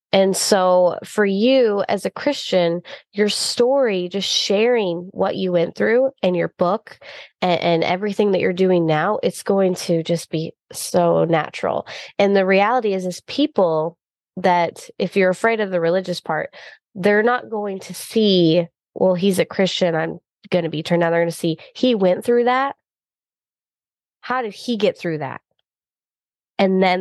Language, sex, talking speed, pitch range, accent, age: English, female, 170 wpm, 175-215 Hz, American, 20-39